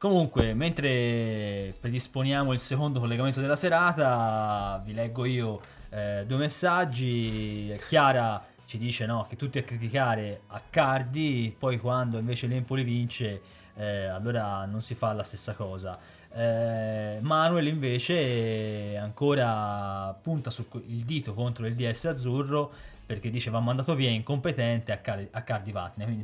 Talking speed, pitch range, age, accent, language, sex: 135 wpm, 110-135 Hz, 20-39, native, Italian, male